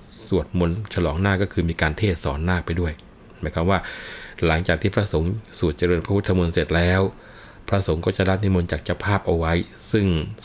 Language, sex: Thai, male